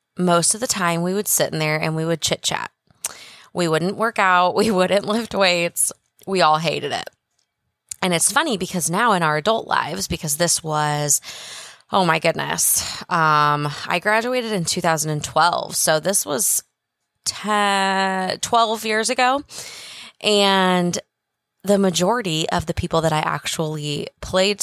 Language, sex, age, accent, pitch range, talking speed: English, female, 20-39, American, 160-200 Hz, 150 wpm